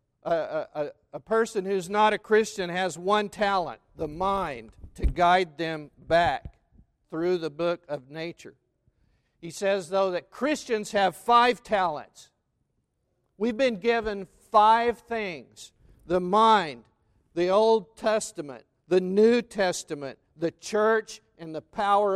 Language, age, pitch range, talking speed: English, 50-69, 155-200 Hz, 125 wpm